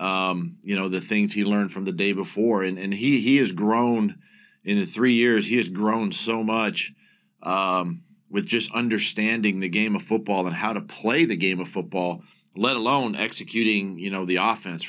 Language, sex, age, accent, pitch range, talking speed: English, male, 40-59, American, 100-115 Hz, 200 wpm